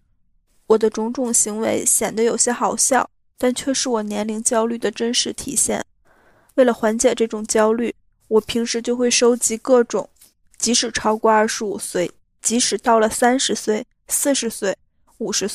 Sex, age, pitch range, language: female, 20-39, 215-245 Hz, Chinese